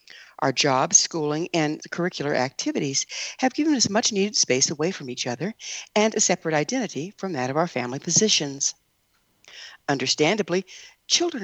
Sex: female